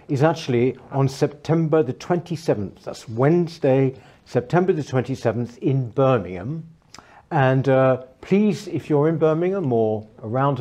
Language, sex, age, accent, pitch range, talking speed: English, male, 60-79, British, 120-145 Hz, 125 wpm